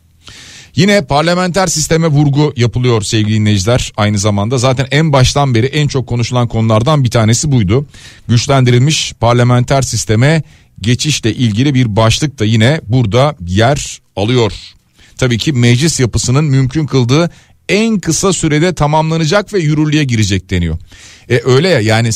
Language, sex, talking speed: Turkish, male, 135 wpm